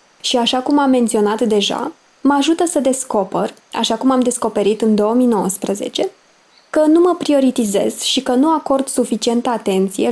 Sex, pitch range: female, 215-265 Hz